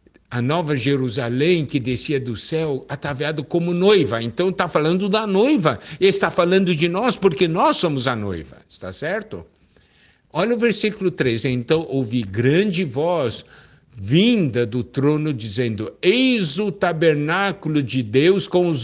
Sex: male